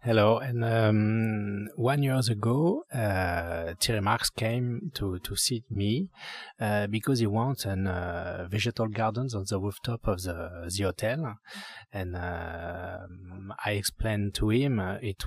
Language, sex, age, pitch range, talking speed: English, male, 30-49, 100-125 Hz, 145 wpm